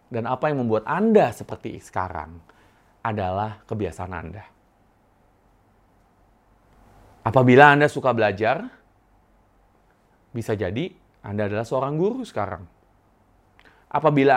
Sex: male